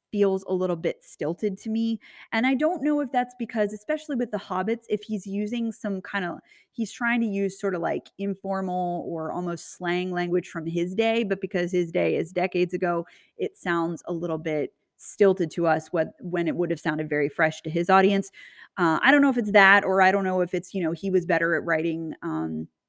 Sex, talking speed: female, 225 wpm